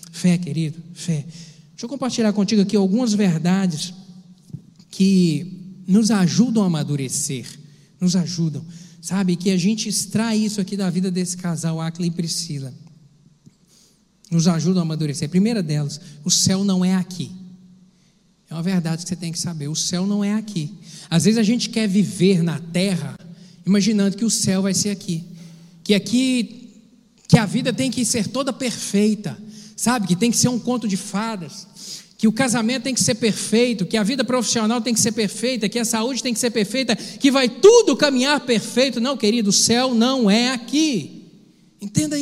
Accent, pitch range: Brazilian, 180-235 Hz